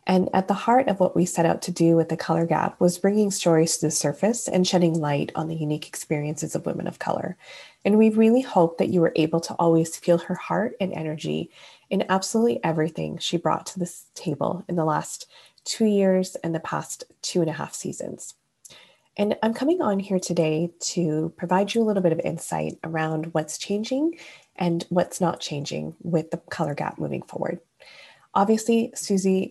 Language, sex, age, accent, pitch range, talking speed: English, female, 20-39, American, 160-195 Hz, 195 wpm